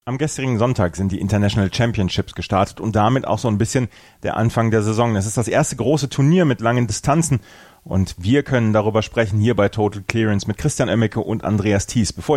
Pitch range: 100-130 Hz